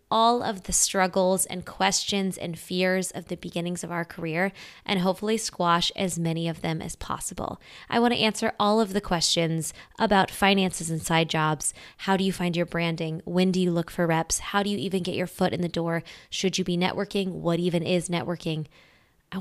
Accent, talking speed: American, 205 wpm